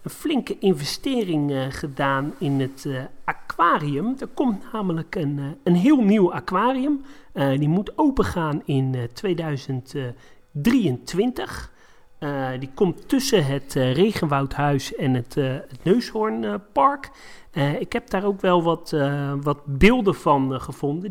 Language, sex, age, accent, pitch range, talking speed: Dutch, male, 40-59, Dutch, 135-185 Hz, 140 wpm